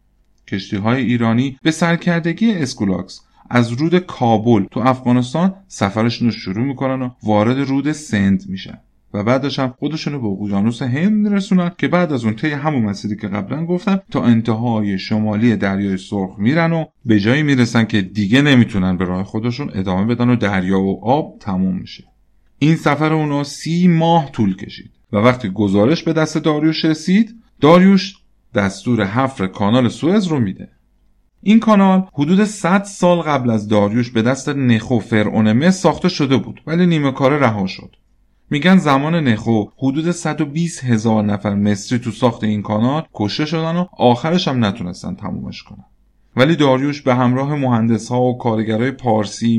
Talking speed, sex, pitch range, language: 155 wpm, male, 105-155 Hz, Persian